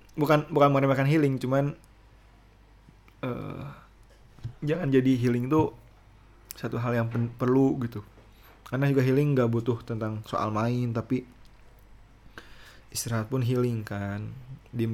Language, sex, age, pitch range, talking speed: Indonesian, male, 20-39, 110-130 Hz, 120 wpm